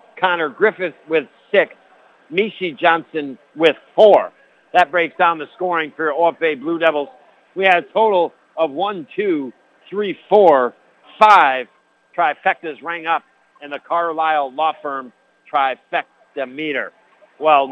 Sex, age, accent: male, 60-79, American